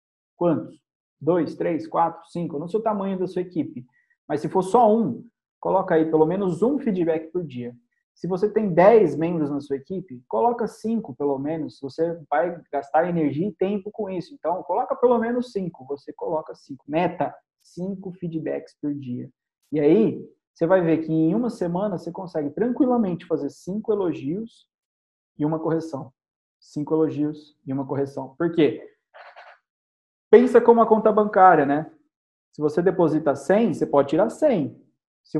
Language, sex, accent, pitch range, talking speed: Portuguese, male, Brazilian, 150-210 Hz, 165 wpm